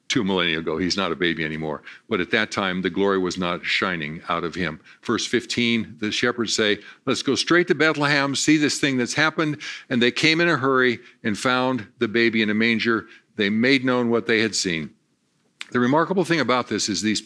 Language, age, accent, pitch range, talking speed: English, 50-69, American, 105-140 Hz, 215 wpm